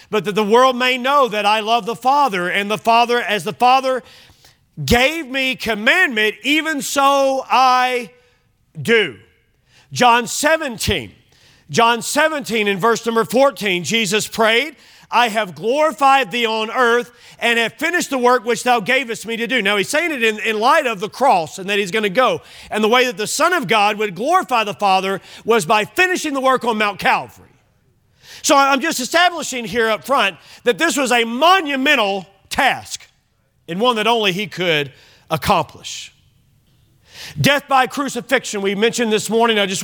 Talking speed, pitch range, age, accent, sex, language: 175 wpm, 205-260 Hz, 40-59, American, male, English